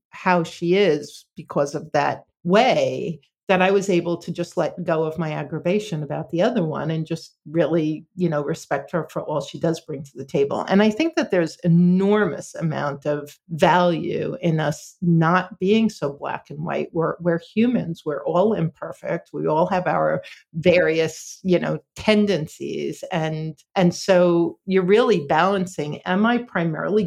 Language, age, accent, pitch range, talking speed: English, 50-69, American, 155-195 Hz, 170 wpm